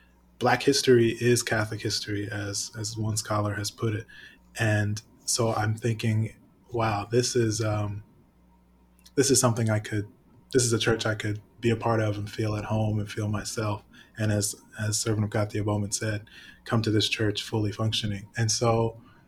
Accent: American